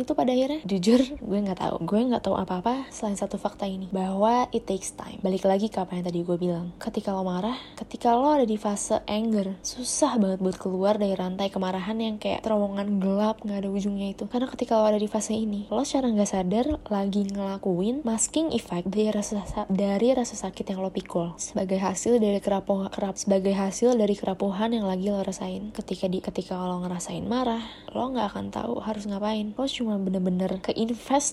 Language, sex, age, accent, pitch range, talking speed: Indonesian, female, 20-39, native, 195-230 Hz, 200 wpm